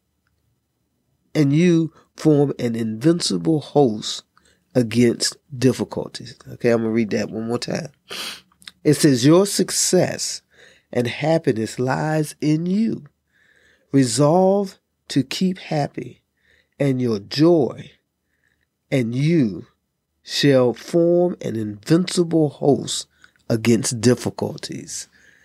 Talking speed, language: 100 wpm, English